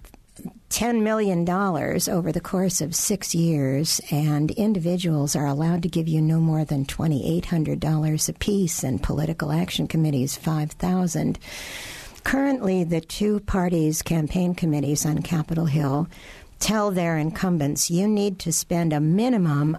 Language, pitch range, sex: English, 150-185 Hz, female